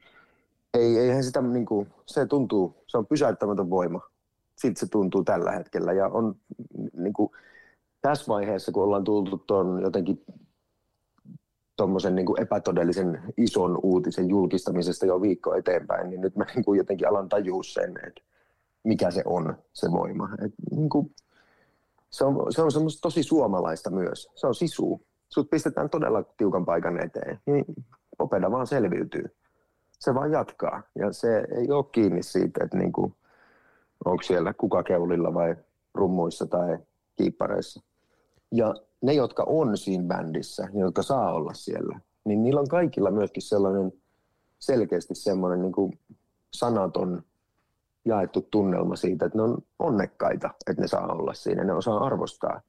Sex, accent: male, native